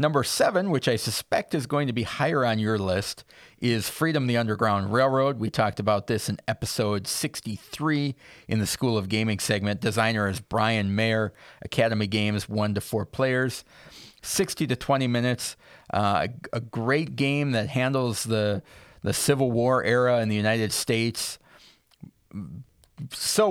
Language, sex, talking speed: English, male, 155 wpm